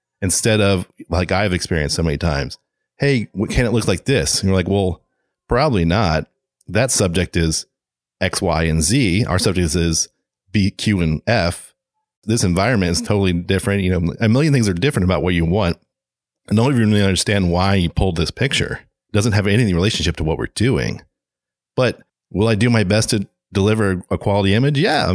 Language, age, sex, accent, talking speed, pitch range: English, 30-49, male, American, 195 wpm, 85-110 Hz